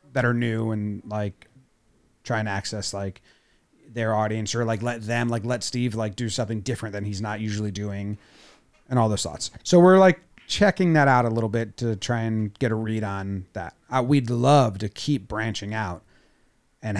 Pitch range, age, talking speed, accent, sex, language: 105-130 Hz, 30-49, 200 wpm, American, male, English